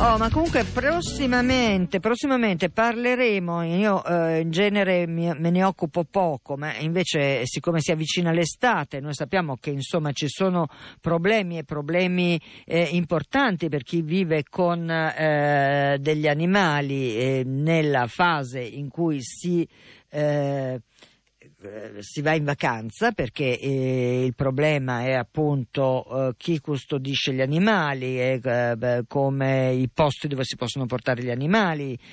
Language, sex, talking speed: Italian, female, 135 wpm